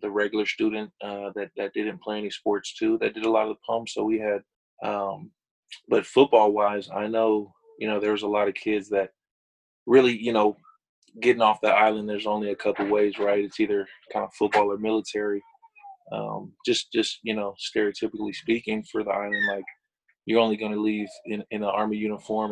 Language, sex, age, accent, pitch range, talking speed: English, male, 20-39, American, 105-110 Hz, 205 wpm